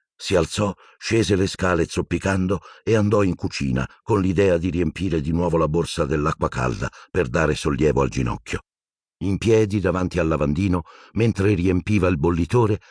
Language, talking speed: Italian, 160 wpm